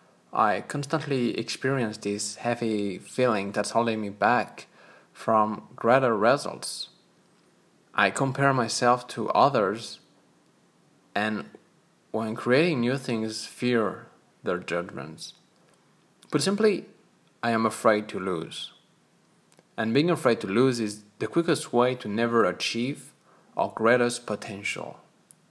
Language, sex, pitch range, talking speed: English, male, 110-140 Hz, 115 wpm